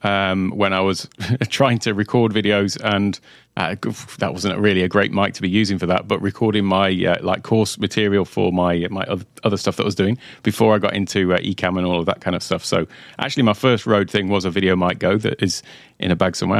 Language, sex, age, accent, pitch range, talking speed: English, male, 30-49, British, 95-110 Hz, 240 wpm